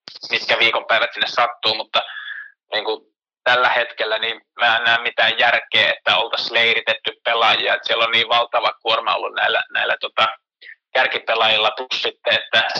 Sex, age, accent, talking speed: male, 20-39, native, 140 wpm